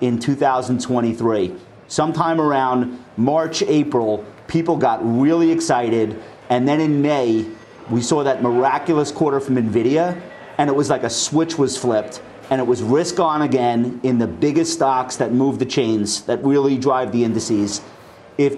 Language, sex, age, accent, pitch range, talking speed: English, male, 40-59, American, 125-155 Hz, 160 wpm